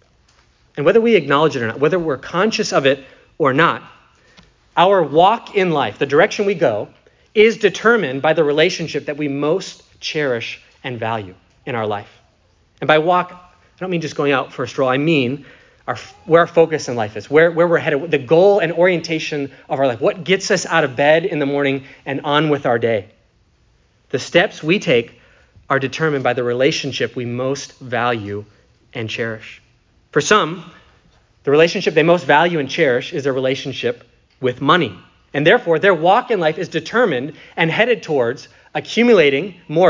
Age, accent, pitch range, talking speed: 30-49, American, 130-175 Hz, 185 wpm